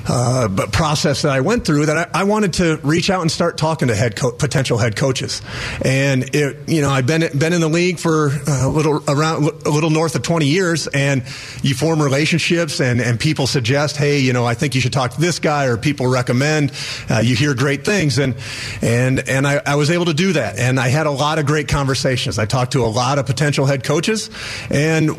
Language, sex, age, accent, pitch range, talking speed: English, male, 40-59, American, 130-160 Hz, 235 wpm